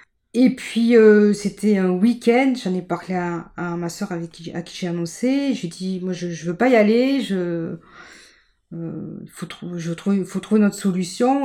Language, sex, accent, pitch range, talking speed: French, female, French, 170-210 Hz, 185 wpm